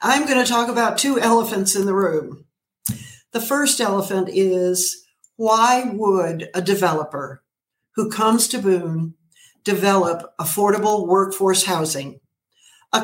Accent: American